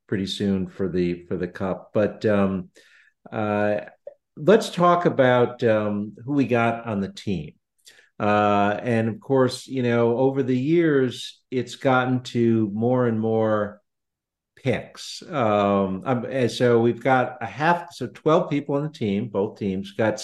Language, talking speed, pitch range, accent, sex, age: English, 155 wpm, 100-125 Hz, American, male, 50-69